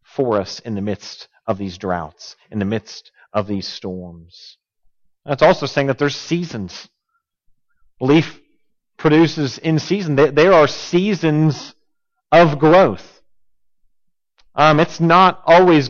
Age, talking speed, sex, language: 40-59, 125 wpm, male, English